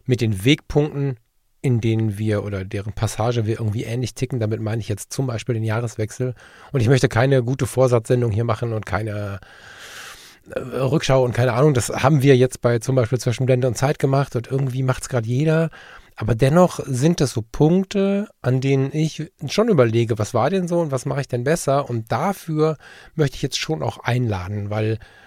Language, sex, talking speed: German, male, 195 wpm